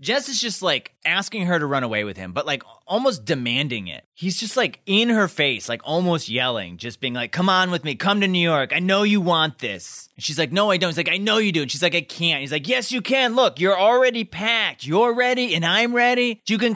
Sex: male